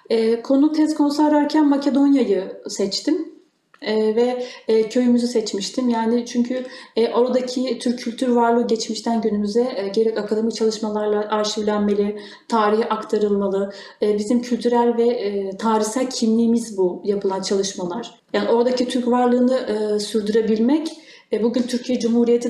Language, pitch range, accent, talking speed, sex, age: Turkish, 210-255 Hz, native, 120 wpm, female, 30-49